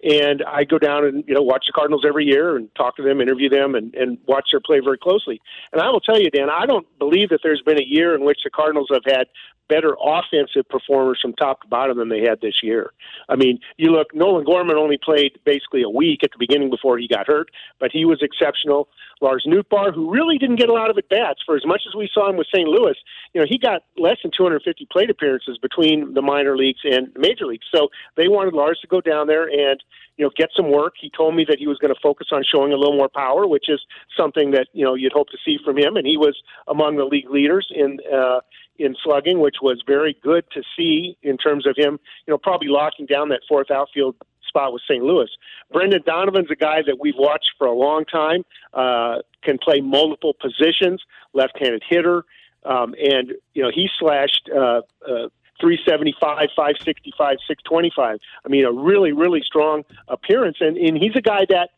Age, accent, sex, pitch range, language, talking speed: 50-69, American, male, 140-190 Hz, English, 225 wpm